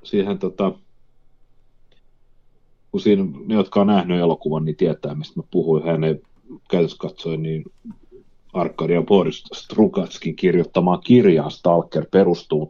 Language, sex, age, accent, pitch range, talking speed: Finnish, male, 30-49, native, 80-120 Hz, 110 wpm